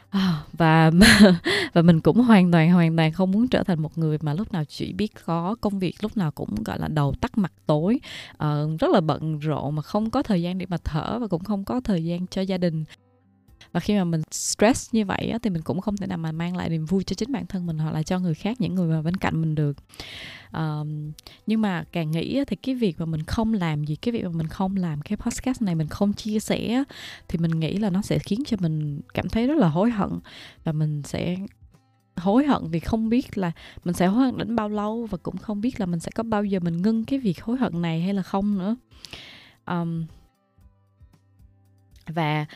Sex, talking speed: female, 235 wpm